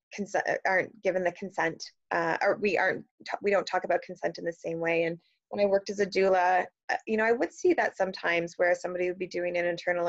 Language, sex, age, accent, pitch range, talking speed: English, female, 20-39, American, 170-200 Hz, 230 wpm